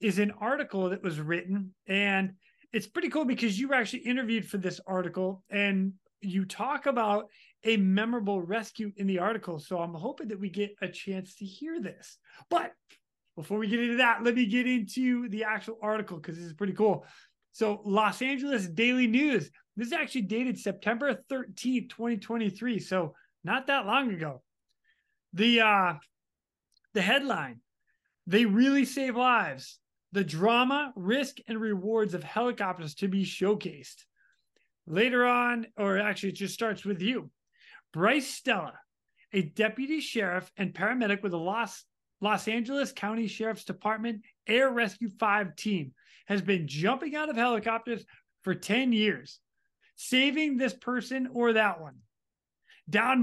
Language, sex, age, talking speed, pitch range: English, male, 30-49, 155 wpm, 195-245 Hz